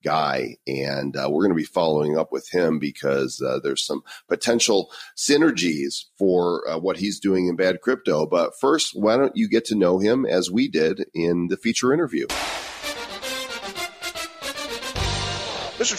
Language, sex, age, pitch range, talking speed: English, male, 40-59, 90-115 Hz, 160 wpm